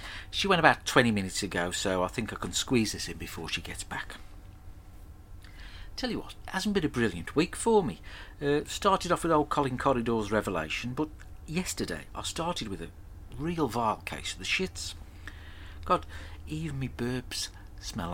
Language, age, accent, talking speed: English, 50-69, British, 180 wpm